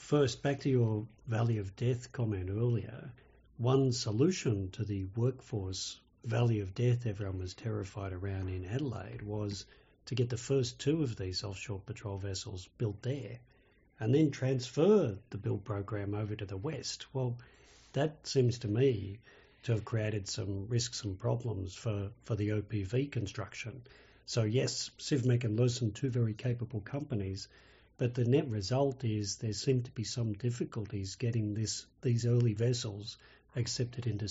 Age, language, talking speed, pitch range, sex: 50-69, English, 155 wpm, 105-125 Hz, male